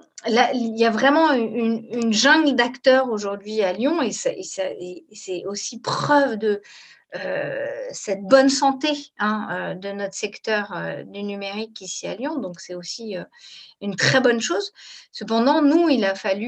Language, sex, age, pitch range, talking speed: French, female, 40-59, 195-255 Hz, 180 wpm